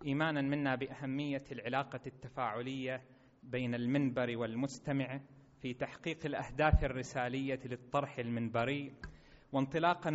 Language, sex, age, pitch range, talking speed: Arabic, male, 30-49, 130-145 Hz, 90 wpm